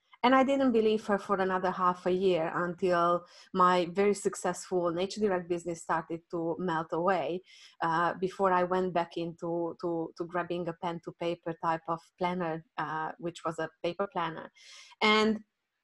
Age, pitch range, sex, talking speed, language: 20-39, 175-215 Hz, female, 165 wpm, English